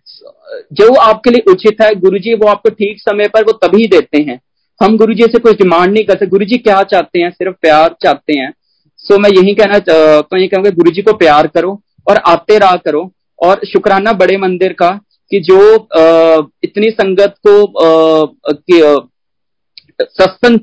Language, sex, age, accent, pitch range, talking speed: Hindi, male, 40-59, native, 175-225 Hz, 165 wpm